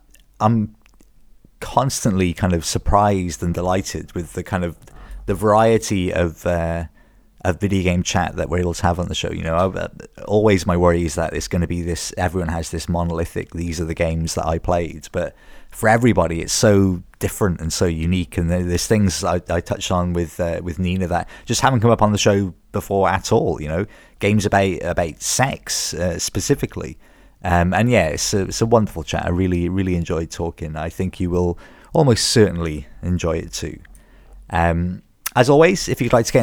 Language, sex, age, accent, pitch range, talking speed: English, male, 30-49, British, 85-110 Hz, 200 wpm